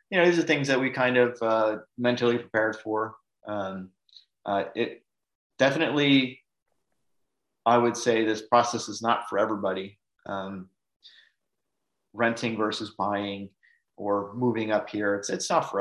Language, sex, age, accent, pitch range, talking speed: English, male, 30-49, American, 100-120 Hz, 145 wpm